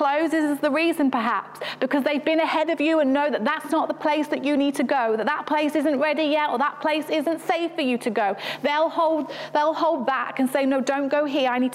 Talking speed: 260 wpm